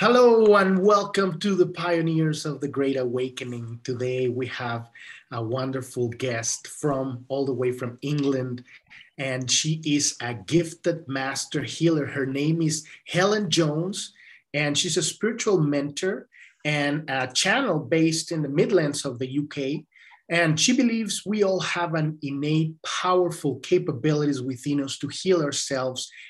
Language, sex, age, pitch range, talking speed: English, male, 30-49, 135-175 Hz, 145 wpm